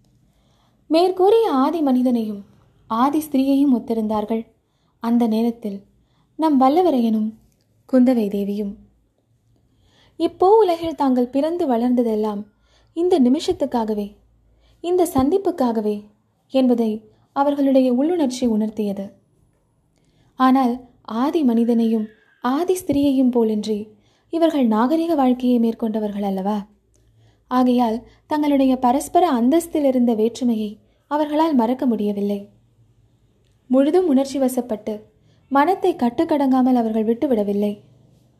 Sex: female